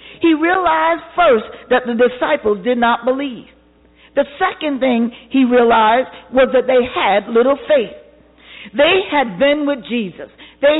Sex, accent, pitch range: female, American, 220-285 Hz